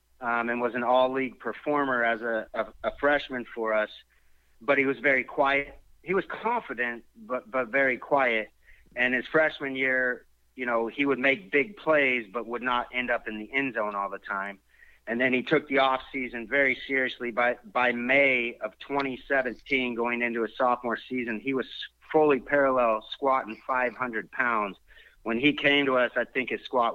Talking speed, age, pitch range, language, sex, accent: 185 wpm, 30-49, 110-135 Hz, English, male, American